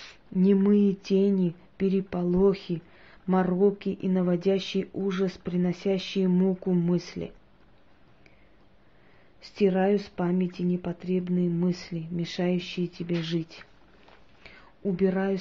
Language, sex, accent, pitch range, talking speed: Russian, female, native, 175-195 Hz, 75 wpm